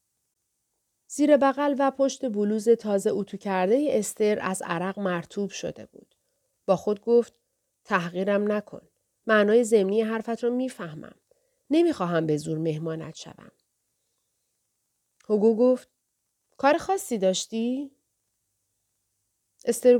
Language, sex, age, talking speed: Persian, female, 30-49, 105 wpm